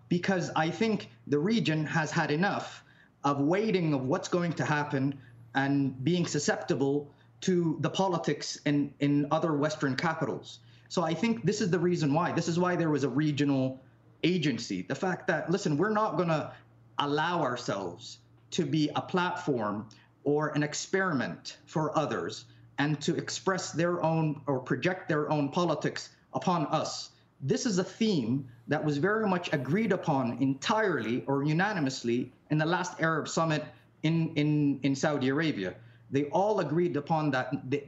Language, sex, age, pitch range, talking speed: English, male, 30-49, 130-165 Hz, 160 wpm